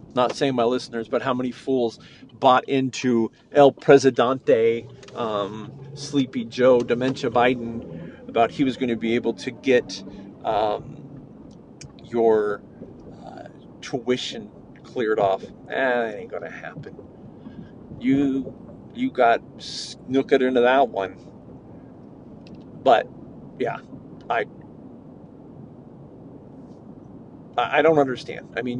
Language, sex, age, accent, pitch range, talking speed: English, male, 40-59, American, 115-140 Hz, 110 wpm